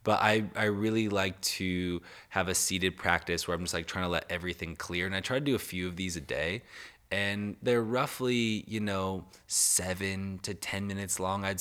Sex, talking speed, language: male, 210 wpm, English